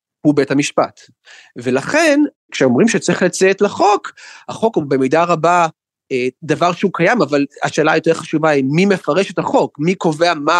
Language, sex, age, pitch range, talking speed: Hebrew, male, 30-49, 145-195 Hz, 160 wpm